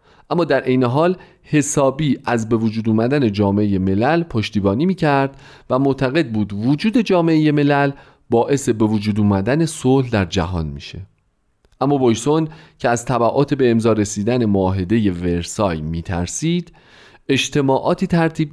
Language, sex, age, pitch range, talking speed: Persian, male, 40-59, 100-140 Hz, 135 wpm